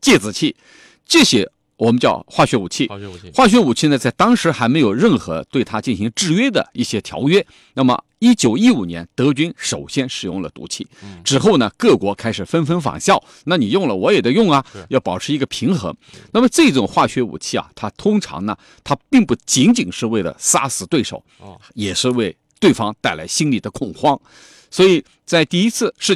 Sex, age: male, 50-69